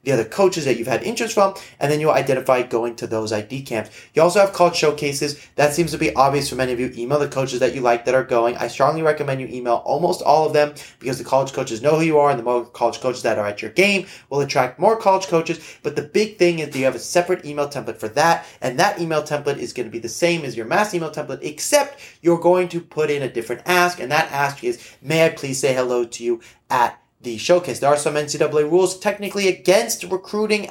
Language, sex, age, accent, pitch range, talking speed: English, male, 30-49, American, 125-175 Hz, 260 wpm